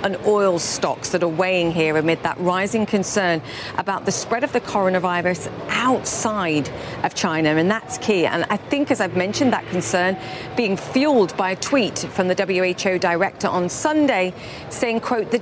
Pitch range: 180-230 Hz